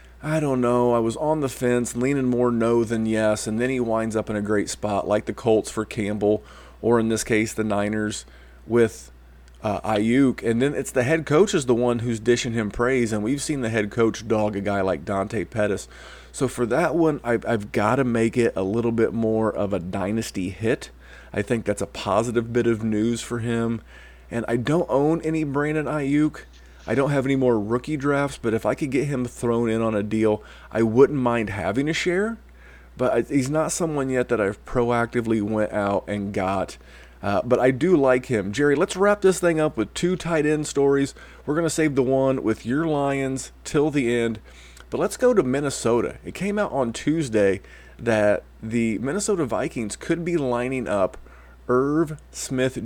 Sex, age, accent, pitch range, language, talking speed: male, 30-49, American, 105-135 Hz, English, 205 wpm